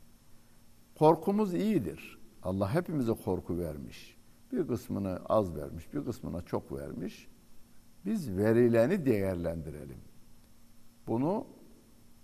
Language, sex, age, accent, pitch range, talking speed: Turkish, male, 60-79, native, 85-115 Hz, 90 wpm